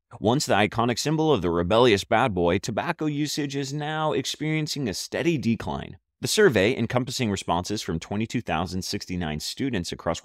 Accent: American